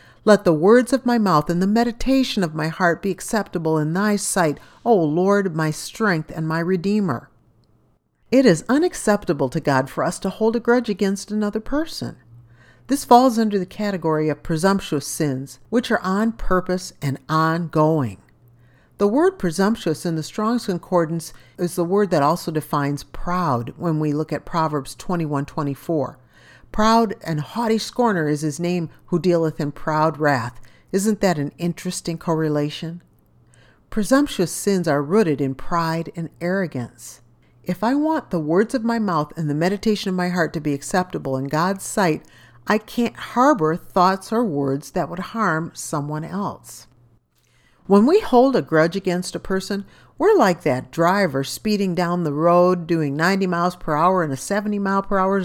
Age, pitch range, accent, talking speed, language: 50-69, 150-205 Hz, American, 170 wpm, English